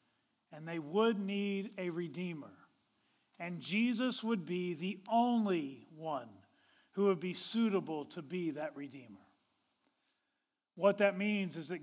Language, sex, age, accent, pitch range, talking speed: English, male, 40-59, American, 170-230 Hz, 130 wpm